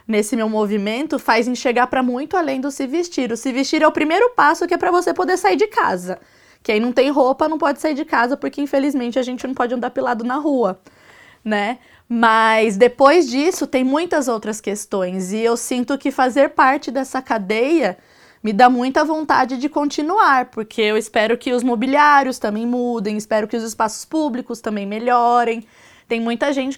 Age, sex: 20-39, female